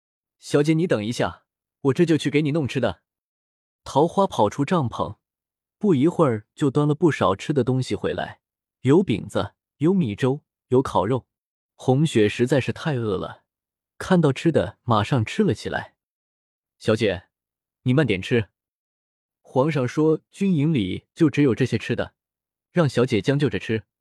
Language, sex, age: Chinese, male, 20-39